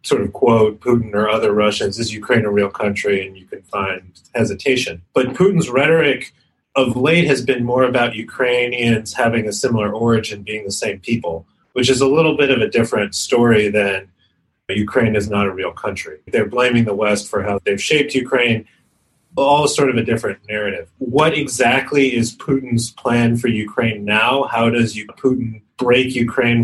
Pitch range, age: 105-130 Hz, 30-49